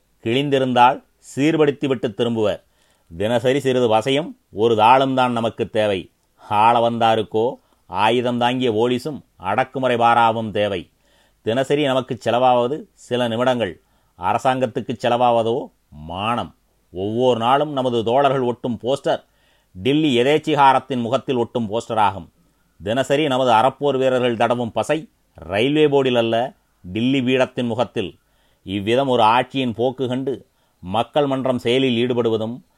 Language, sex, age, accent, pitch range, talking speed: Tamil, male, 30-49, native, 115-135 Hz, 110 wpm